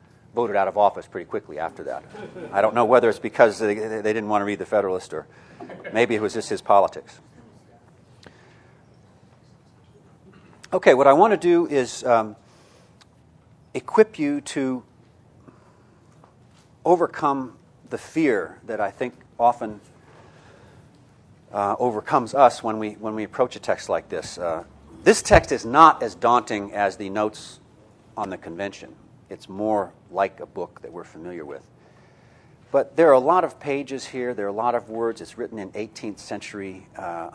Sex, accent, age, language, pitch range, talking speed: male, American, 40-59, English, 100-125 Hz, 160 wpm